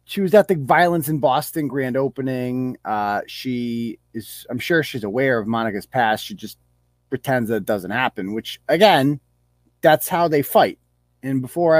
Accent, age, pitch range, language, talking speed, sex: American, 30-49, 110-150 Hz, English, 175 wpm, male